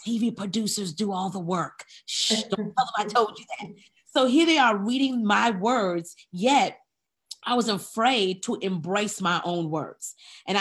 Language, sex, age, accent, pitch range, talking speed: English, female, 30-49, American, 165-225 Hz, 175 wpm